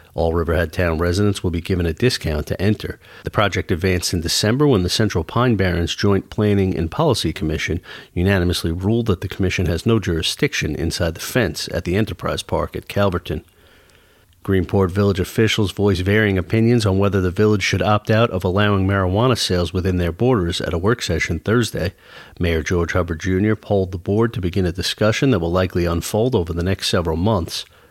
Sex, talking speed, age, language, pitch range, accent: male, 190 wpm, 40-59, English, 85-105 Hz, American